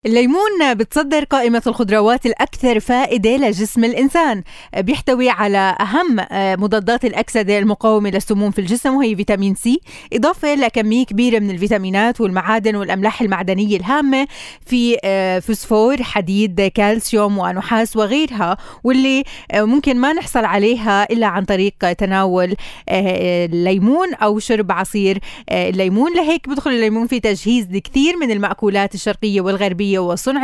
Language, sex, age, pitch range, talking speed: Arabic, female, 20-39, 195-245 Hz, 120 wpm